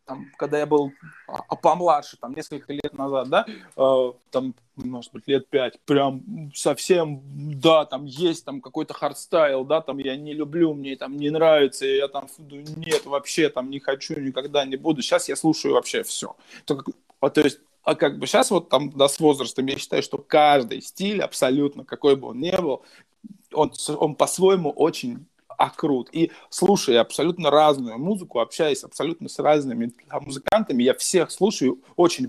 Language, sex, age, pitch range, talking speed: Russian, male, 20-39, 140-175 Hz, 160 wpm